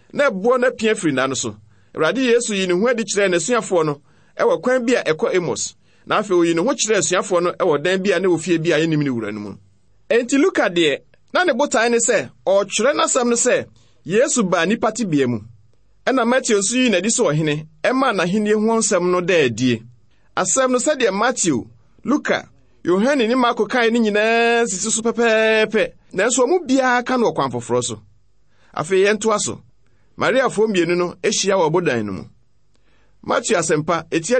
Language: English